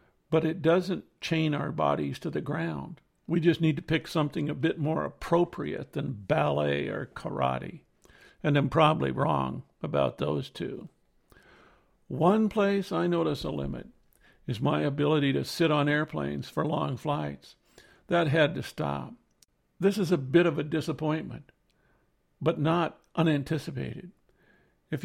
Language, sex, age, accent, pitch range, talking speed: English, male, 60-79, American, 140-170 Hz, 145 wpm